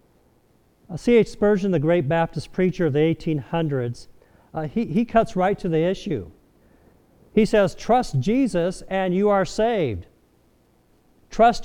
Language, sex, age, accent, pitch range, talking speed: English, male, 50-69, American, 160-210 Hz, 125 wpm